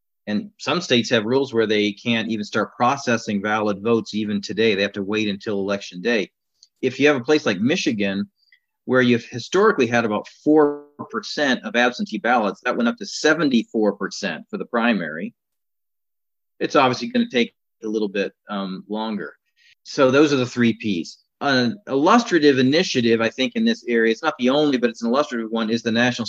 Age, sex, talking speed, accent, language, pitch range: 40-59, male, 185 wpm, American, English, 110-130 Hz